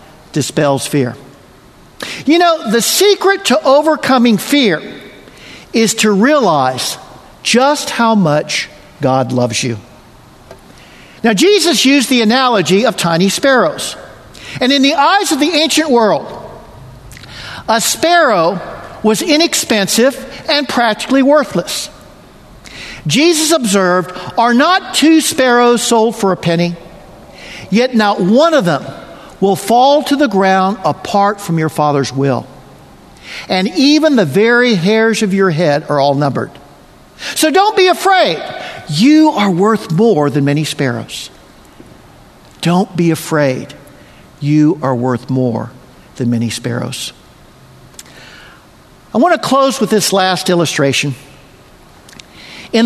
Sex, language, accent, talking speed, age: male, English, American, 120 wpm, 50-69